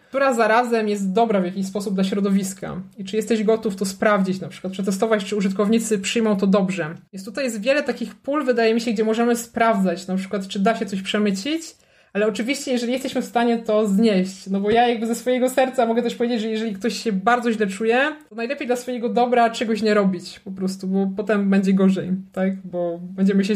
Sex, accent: male, native